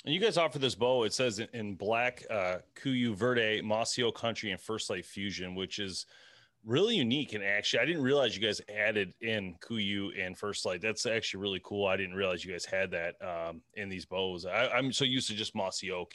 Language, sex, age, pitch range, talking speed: English, male, 30-49, 95-125 Hz, 220 wpm